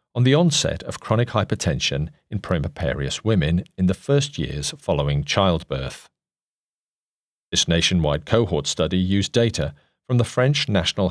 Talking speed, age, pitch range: 135 wpm, 40-59, 80-110 Hz